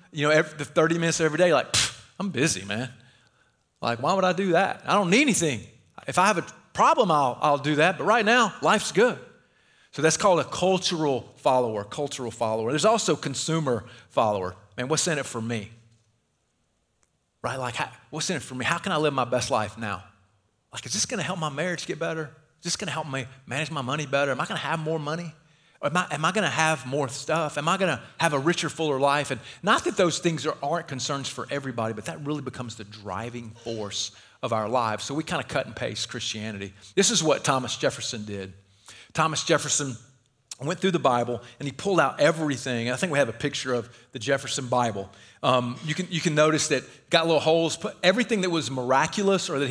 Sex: male